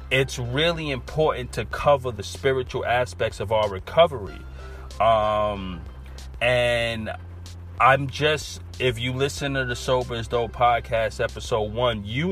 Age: 30-49